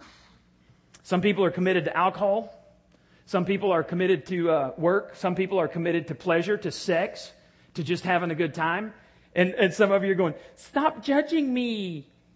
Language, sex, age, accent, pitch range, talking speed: English, male, 40-59, American, 160-230 Hz, 180 wpm